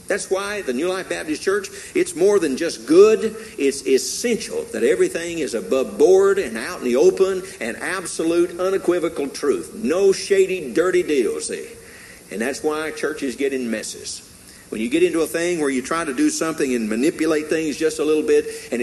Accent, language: American, English